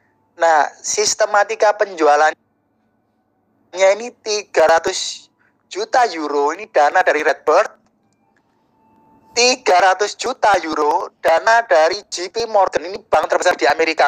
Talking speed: 100 wpm